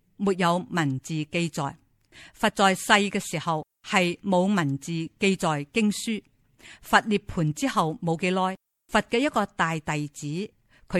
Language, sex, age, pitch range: Chinese, female, 50-69, 155-205 Hz